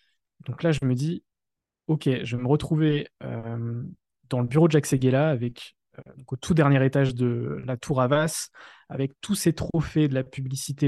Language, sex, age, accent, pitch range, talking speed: French, male, 20-39, French, 130-160 Hz, 190 wpm